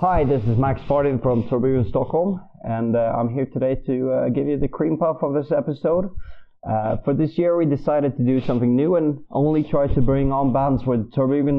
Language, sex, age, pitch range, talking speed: English, male, 30-49, 115-140 Hz, 215 wpm